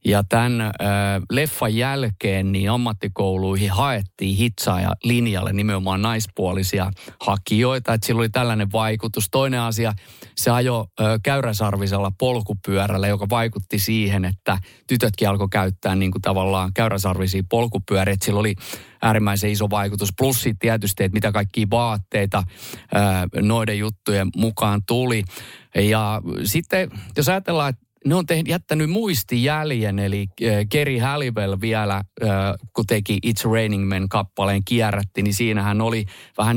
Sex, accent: male, native